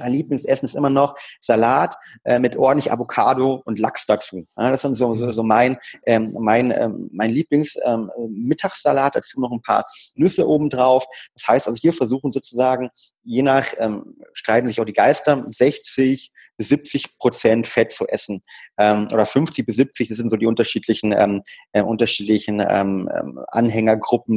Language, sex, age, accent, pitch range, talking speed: German, male, 30-49, German, 110-130 Hz, 170 wpm